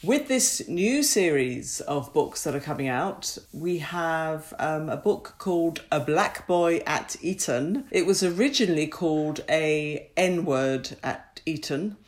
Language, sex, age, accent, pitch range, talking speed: English, female, 50-69, British, 145-180 Hz, 150 wpm